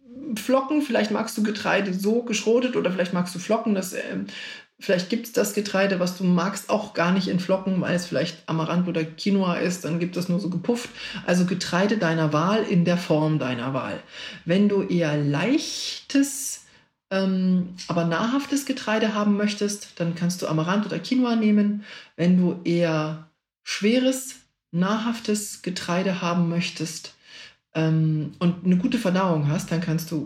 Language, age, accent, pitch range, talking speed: German, 40-59, German, 165-210 Hz, 165 wpm